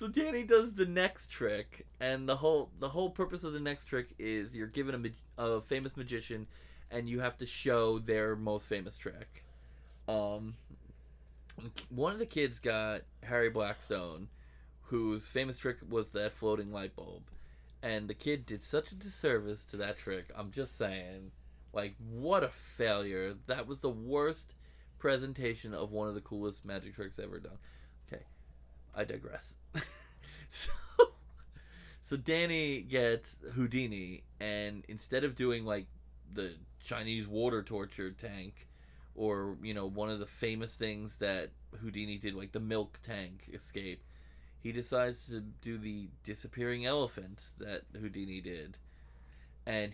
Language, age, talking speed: English, 20-39, 150 wpm